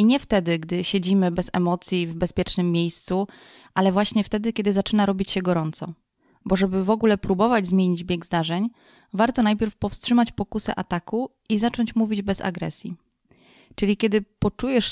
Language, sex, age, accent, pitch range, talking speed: Polish, female, 20-39, native, 185-220 Hz, 155 wpm